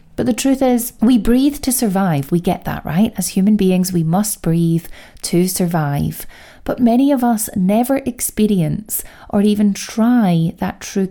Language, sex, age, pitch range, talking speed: English, female, 30-49, 170-215 Hz, 170 wpm